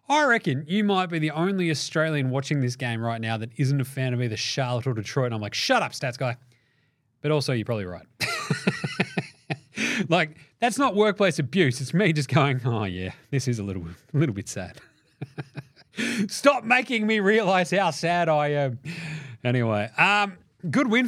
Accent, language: Australian, English